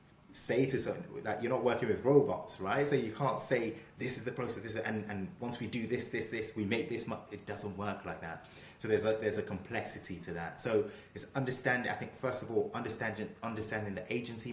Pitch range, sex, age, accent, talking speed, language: 100-115 Hz, male, 20-39, British, 225 wpm, English